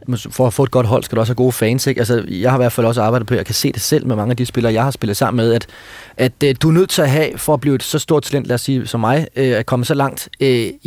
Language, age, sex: Danish, 30-49, male